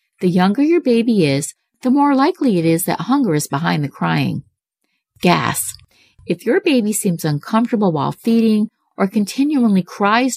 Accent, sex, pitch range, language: American, female, 165-240 Hz, English